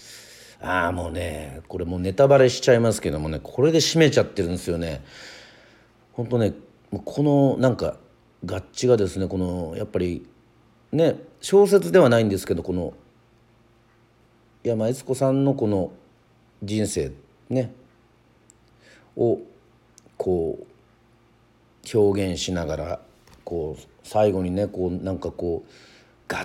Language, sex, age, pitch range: Japanese, male, 40-59, 90-115 Hz